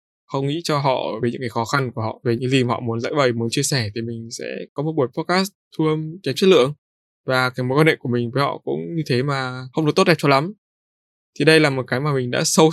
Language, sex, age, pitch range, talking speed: Vietnamese, male, 20-39, 120-155 Hz, 290 wpm